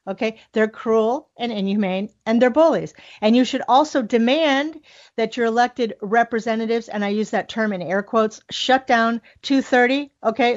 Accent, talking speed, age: American, 165 wpm, 40-59